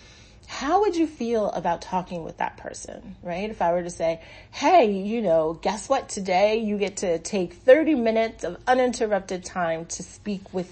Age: 30-49